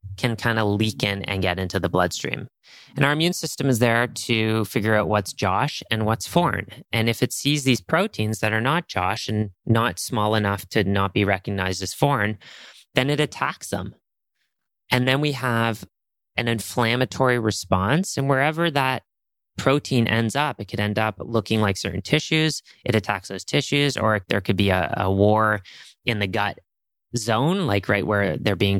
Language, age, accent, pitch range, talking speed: English, 30-49, American, 100-130 Hz, 185 wpm